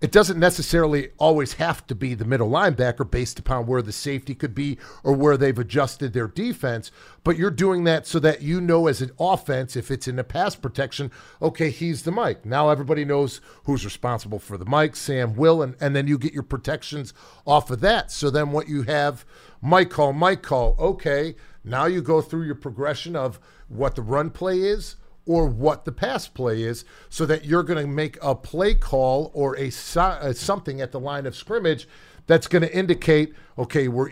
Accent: American